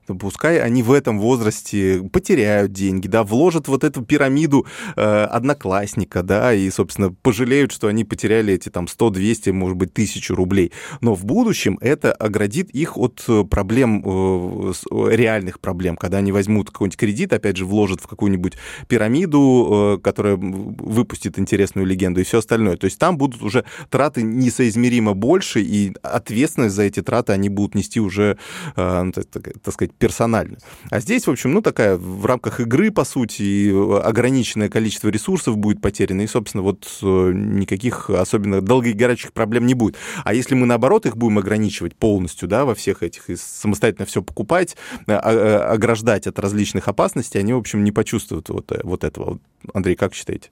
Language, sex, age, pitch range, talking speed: Russian, male, 20-39, 100-120 Hz, 165 wpm